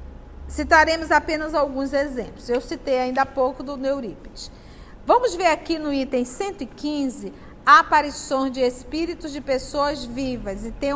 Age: 50-69